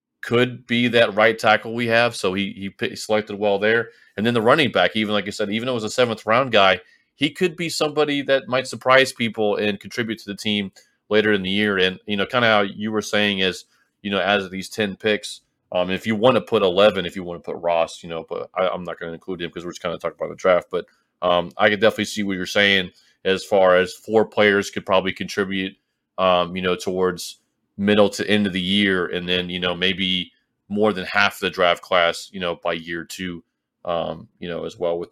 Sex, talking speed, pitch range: male, 250 wpm, 90-105 Hz